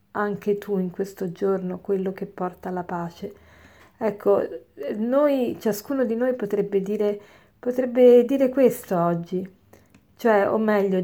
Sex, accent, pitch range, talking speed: female, native, 190-225 Hz, 130 wpm